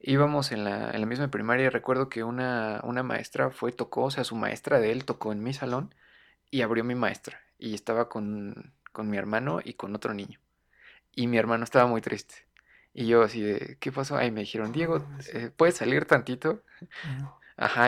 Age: 20-39